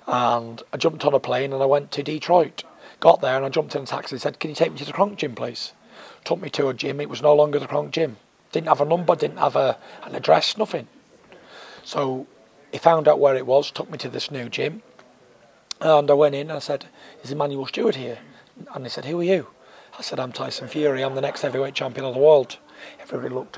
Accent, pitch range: British, 130-150 Hz